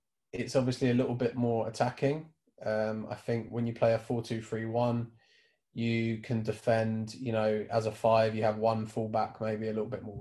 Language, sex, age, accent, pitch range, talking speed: English, male, 20-39, British, 110-125 Hz, 205 wpm